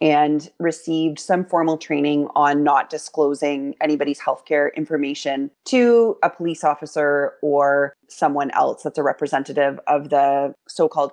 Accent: American